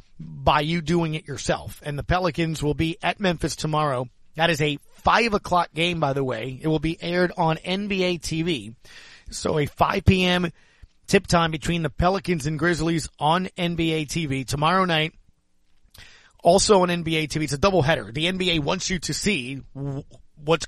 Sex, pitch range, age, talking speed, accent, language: male, 145-175 Hz, 30-49, 175 wpm, American, English